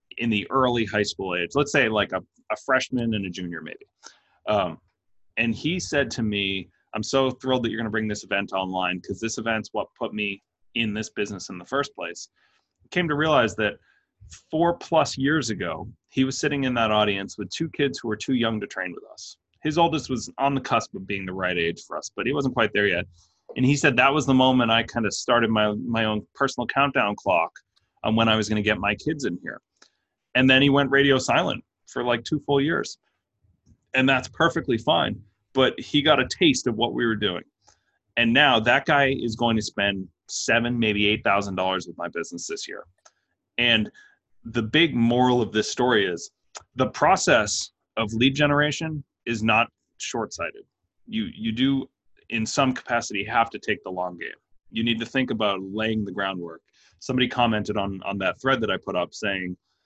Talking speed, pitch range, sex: 210 wpm, 100-135 Hz, male